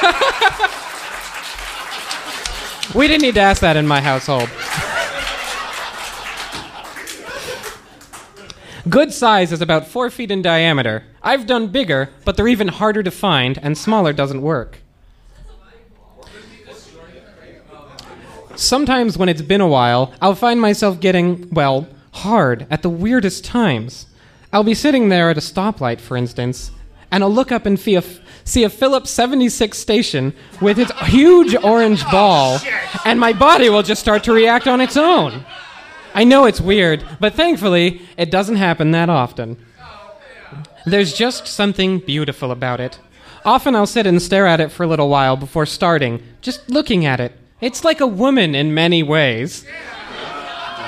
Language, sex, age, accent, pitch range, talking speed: English, male, 20-39, American, 150-230 Hz, 145 wpm